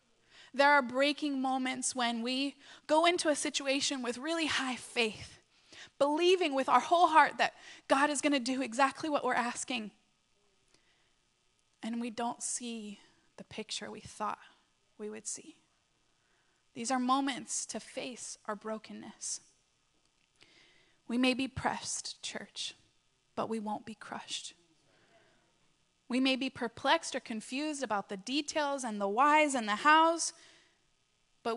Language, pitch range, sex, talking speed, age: English, 225-280 Hz, female, 140 wpm, 20-39